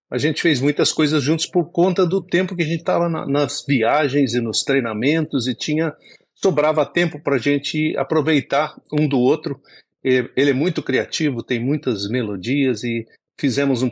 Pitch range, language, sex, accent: 130-160 Hz, Portuguese, male, Brazilian